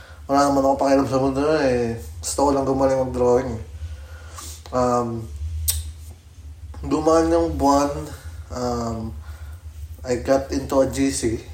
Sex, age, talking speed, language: male, 20-39, 115 wpm, Filipino